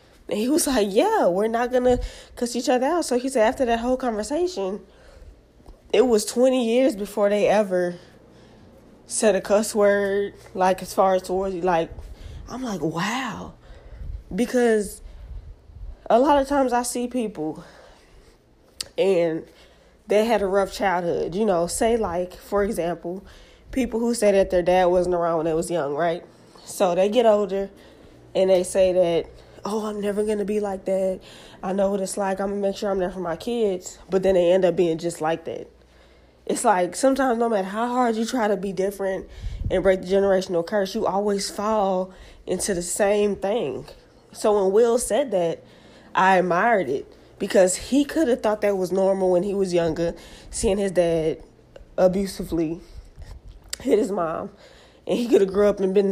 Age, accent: 20-39, American